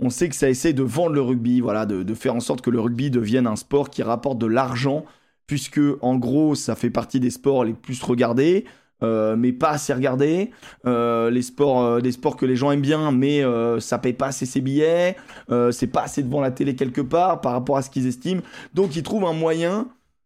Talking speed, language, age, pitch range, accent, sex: 235 wpm, French, 20-39, 125-175 Hz, French, male